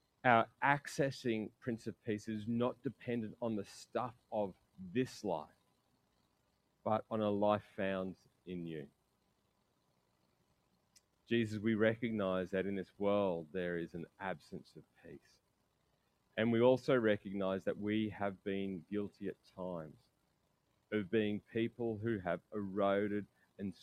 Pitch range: 90-115 Hz